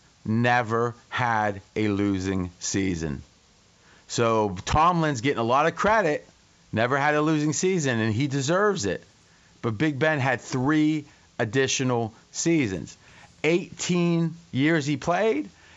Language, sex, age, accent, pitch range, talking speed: English, male, 30-49, American, 115-150 Hz, 120 wpm